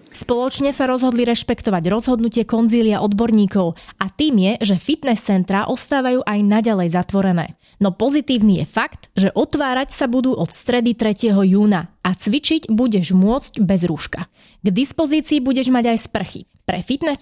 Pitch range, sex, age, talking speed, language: 195-255 Hz, female, 20-39, 150 wpm, Slovak